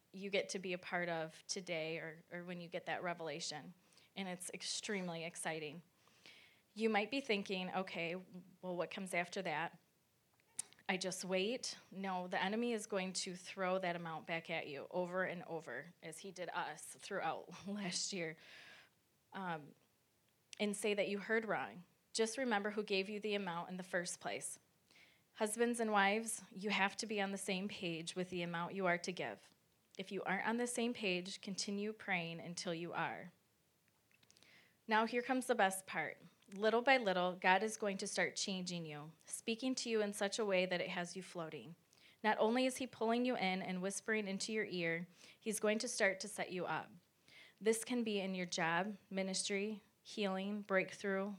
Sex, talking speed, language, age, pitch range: female, 185 wpm, English, 20-39, 175-210 Hz